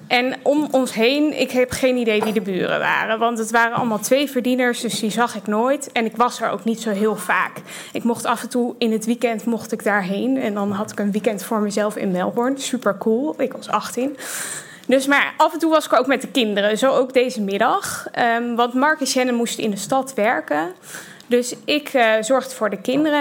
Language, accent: Dutch, Dutch